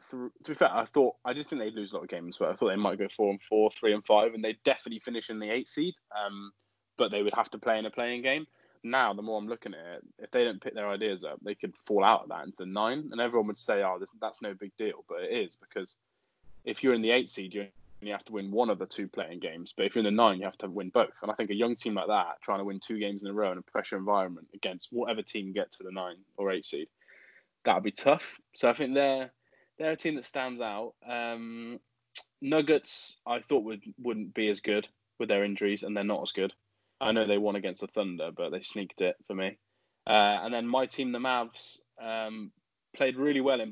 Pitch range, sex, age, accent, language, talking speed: 100-125 Hz, male, 20-39, British, English, 270 wpm